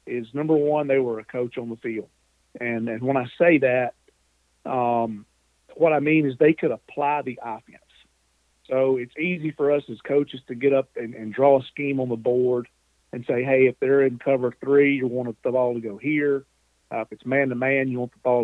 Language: English